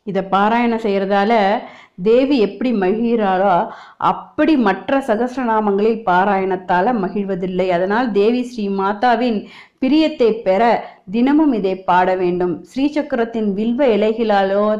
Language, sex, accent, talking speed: Tamil, female, native, 95 wpm